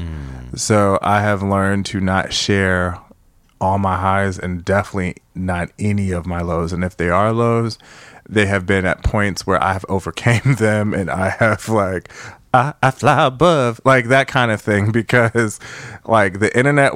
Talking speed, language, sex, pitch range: 170 wpm, English, male, 95-120 Hz